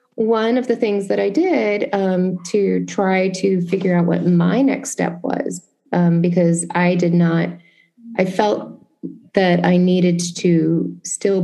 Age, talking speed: 30-49, 155 wpm